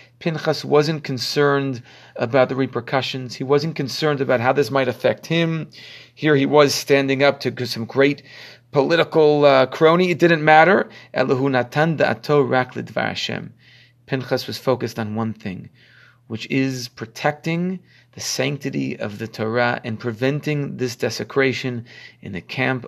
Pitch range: 120-145 Hz